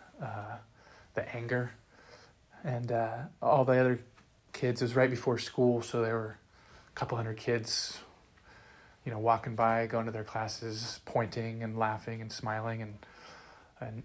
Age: 20-39